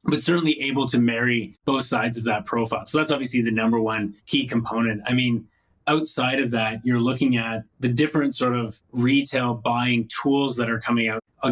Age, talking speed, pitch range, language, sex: 20-39, 200 wpm, 110-130 Hz, English, male